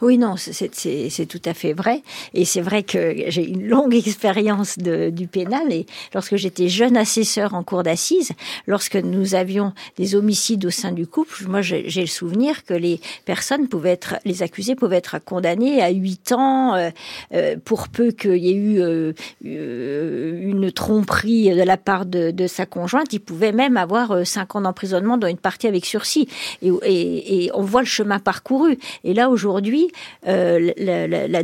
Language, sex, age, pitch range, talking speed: French, female, 50-69, 185-235 Hz, 185 wpm